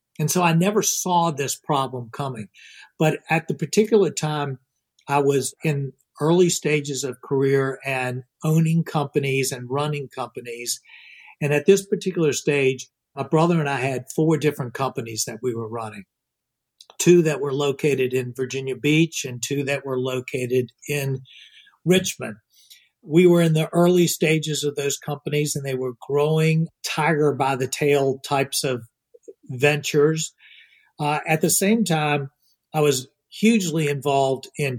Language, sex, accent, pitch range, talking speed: English, male, American, 130-165 Hz, 150 wpm